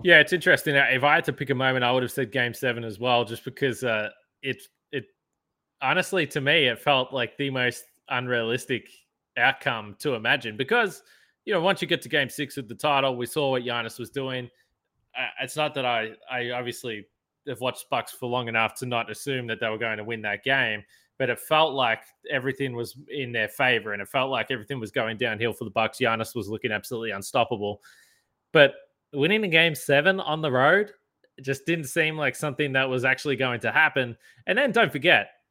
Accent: Australian